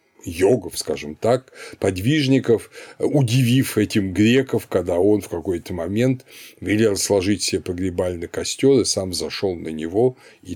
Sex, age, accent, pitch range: male, 50-69, native, 100-130 Hz